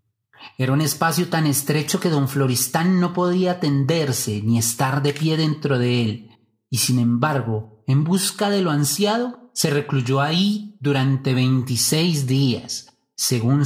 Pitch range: 115-155 Hz